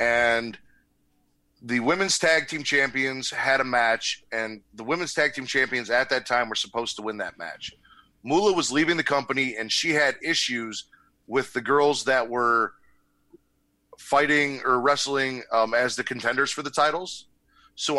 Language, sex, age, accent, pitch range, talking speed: English, male, 30-49, American, 120-145 Hz, 165 wpm